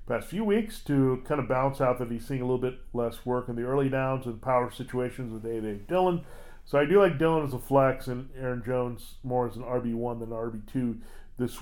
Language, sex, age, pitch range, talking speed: English, male, 40-59, 120-140 Hz, 230 wpm